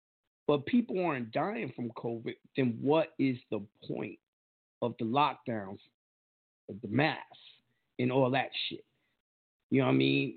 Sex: male